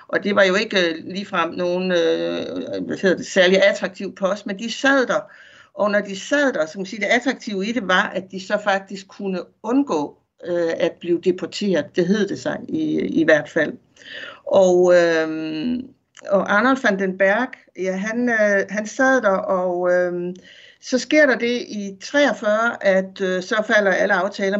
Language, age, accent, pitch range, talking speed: Danish, 60-79, native, 185-230 Hz, 180 wpm